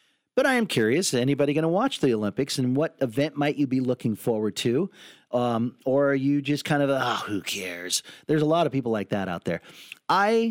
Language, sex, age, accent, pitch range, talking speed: English, male, 40-59, American, 120-155 Hz, 225 wpm